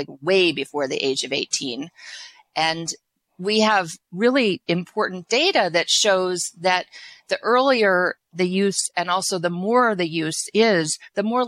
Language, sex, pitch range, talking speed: English, female, 170-210 Hz, 150 wpm